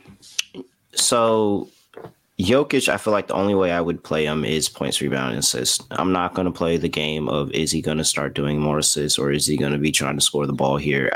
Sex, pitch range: male, 80-95 Hz